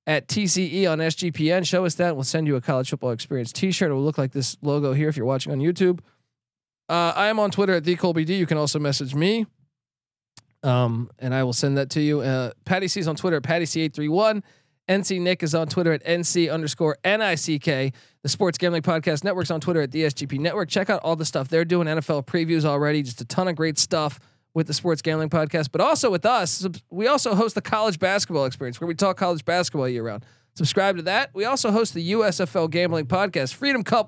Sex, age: male, 20-39